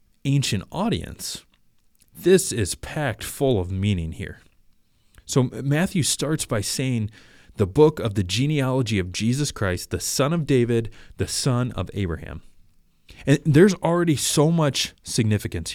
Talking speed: 135 wpm